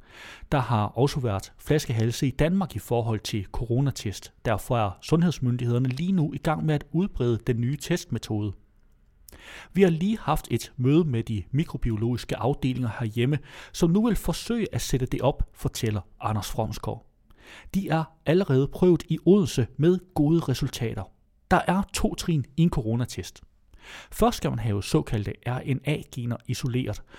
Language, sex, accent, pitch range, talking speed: Danish, male, native, 115-160 Hz, 150 wpm